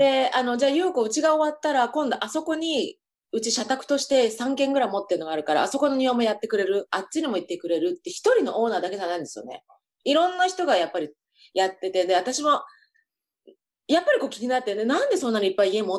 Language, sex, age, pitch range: Japanese, female, 30-49, 200-320 Hz